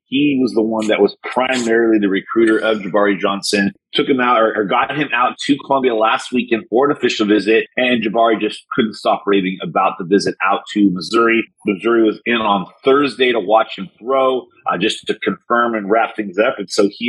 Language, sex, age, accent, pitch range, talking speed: English, male, 30-49, American, 105-130 Hz, 210 wpm